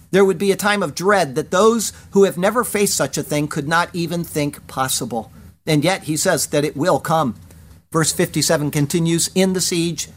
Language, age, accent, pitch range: English, 50-69, American, 135-190 Hz